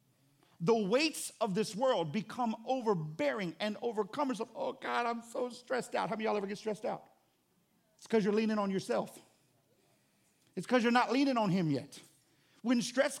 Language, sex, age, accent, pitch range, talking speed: English, male, 50-69, American, 190-255 Hz, 180 wpm